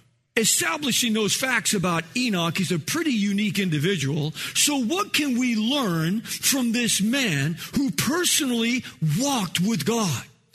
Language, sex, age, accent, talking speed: English, male, 50-69, American, 130 wpm